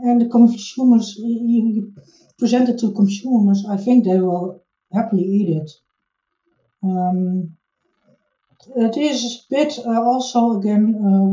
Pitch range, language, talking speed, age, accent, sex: 180-235 Hz, English, 125 wpm, 60-79, Dutch, female